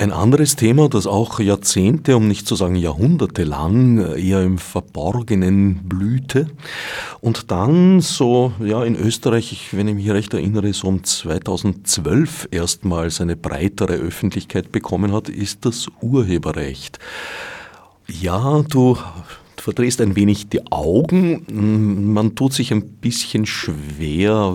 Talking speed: 125 wpm